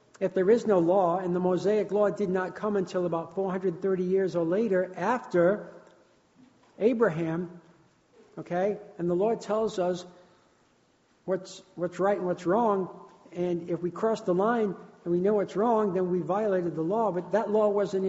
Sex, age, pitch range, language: male, 60-79, 175-200 Hz, English